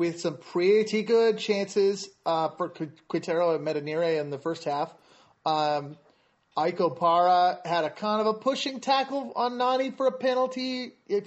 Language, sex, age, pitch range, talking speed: English, male, 30-49, 155-200 Hz, 160 wpm